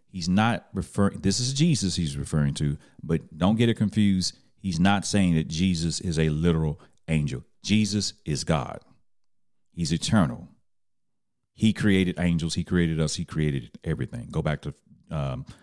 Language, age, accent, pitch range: English, 40-59, American, 85-100 Hz